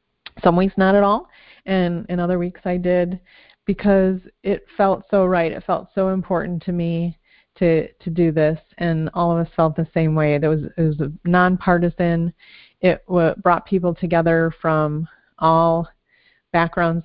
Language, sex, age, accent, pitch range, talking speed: English, female, 30-49, American, 165-190 Hz, 165 wpm